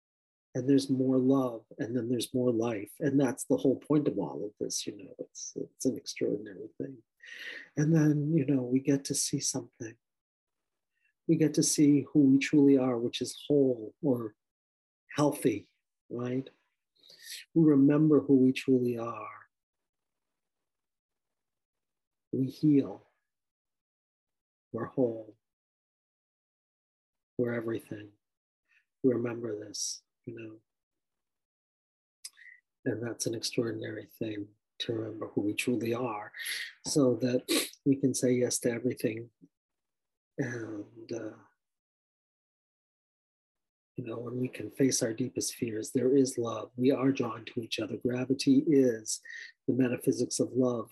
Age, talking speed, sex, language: 50-69, 130 wpm, male, English